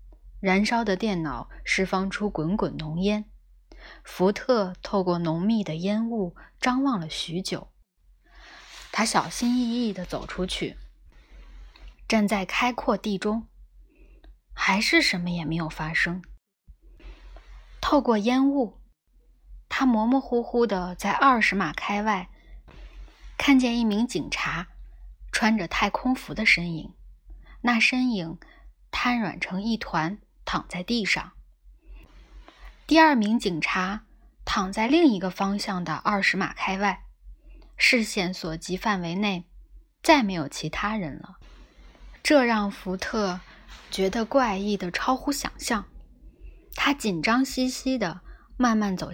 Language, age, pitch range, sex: Chinese, 20-39, 175-235 Hz, female